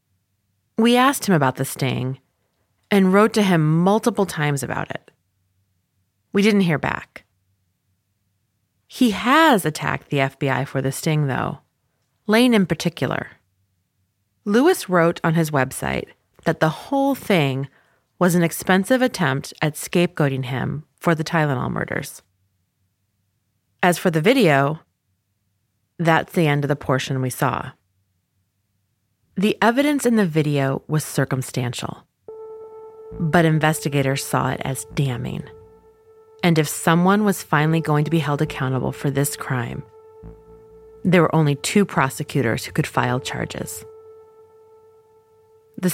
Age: 30-49